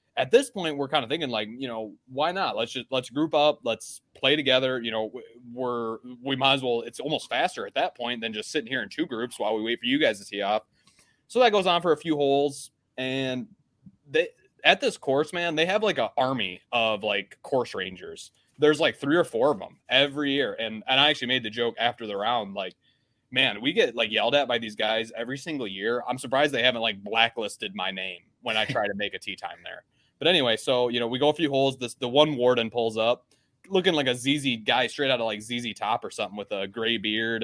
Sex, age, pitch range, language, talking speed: male, 20-39, 115-145 Hz, English, 245 wpm